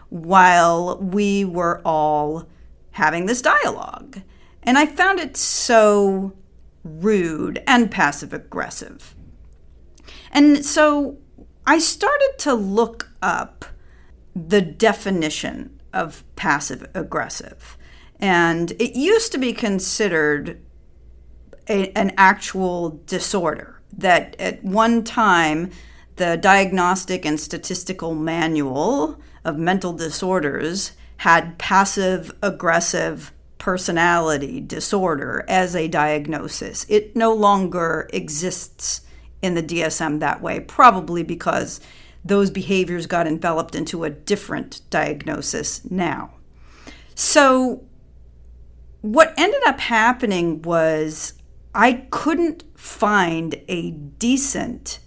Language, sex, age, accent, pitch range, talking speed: English, female, 40-59, American, 155-210 Hz, 95 wpm